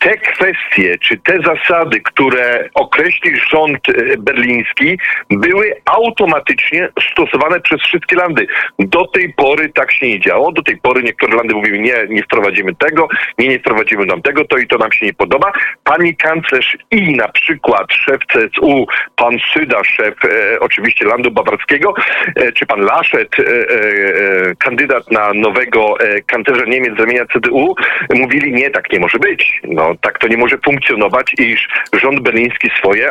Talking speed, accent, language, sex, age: 165 wpm, native, Polish, male, 40-59